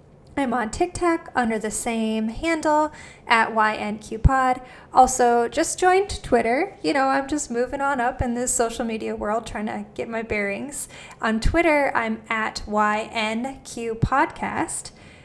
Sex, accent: female, American